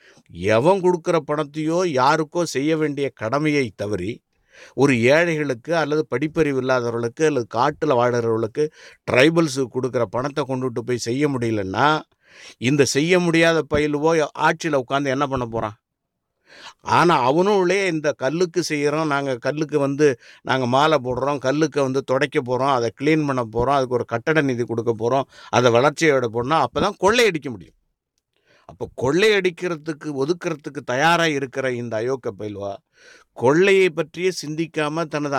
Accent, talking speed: Indian, 110 wpm